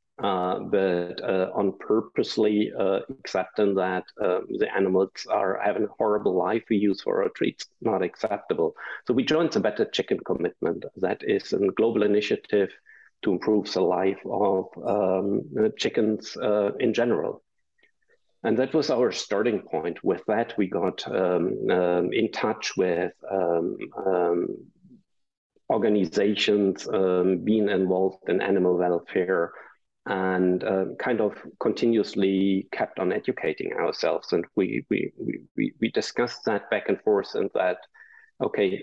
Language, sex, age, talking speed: English, male, 50-69, 140 wpm